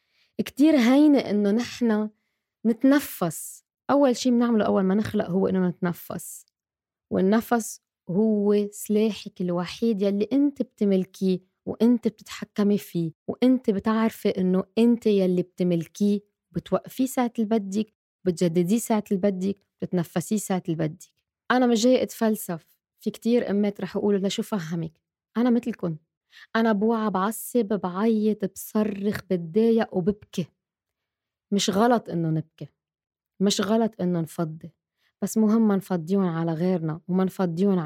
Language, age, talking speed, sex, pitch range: Arabic, 20-39, 120 wpm, female, 175-220 Hz